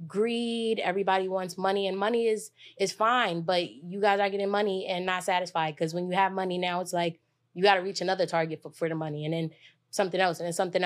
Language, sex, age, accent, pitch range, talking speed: English, female, 20-39, American, 170-195 Hz, 240 wpm